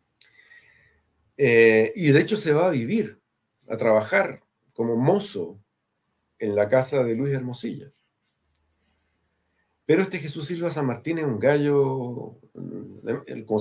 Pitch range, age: 105-160 Hz, 50-69